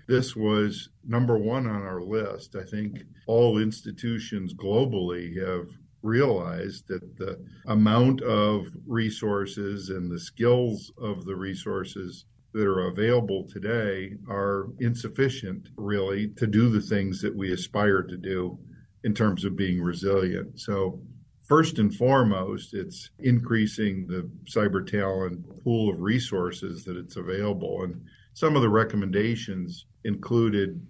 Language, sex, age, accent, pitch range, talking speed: English, male, 50-69, American, 95-110 Hz, 130 wpm